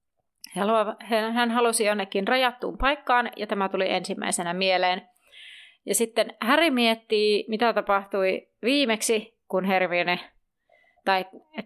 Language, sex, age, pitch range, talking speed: Finnish, female, 30-49, 185-235 Hz, 100 wpm